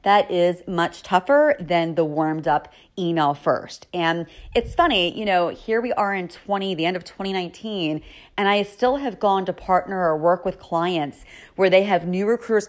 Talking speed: 190 wpm